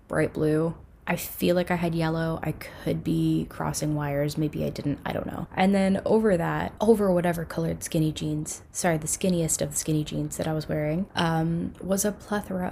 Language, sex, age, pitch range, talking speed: English, female, 10-29, 160-190 Hz, 205 wpm